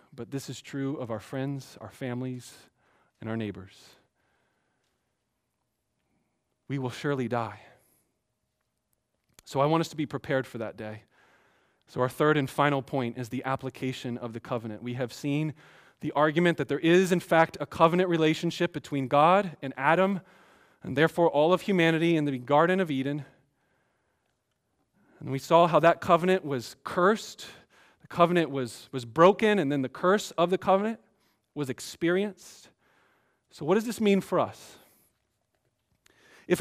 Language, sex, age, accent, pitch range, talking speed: English, male, 30-49, American, 135-195 Hz, 155 wpm